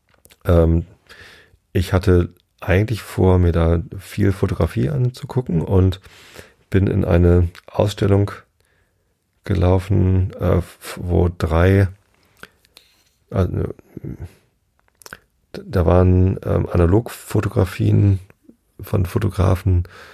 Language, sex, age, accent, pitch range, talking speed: German, male, 30-49, German, 85-100 Hz, 70 wpm